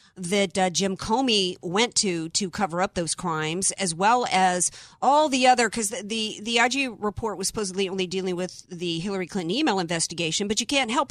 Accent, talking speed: American, 190 wpm